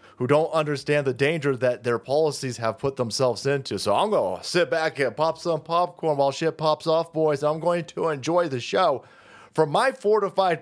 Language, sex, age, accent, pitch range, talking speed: English, male, 30-49, American, 140-220 Hz, 205 wpm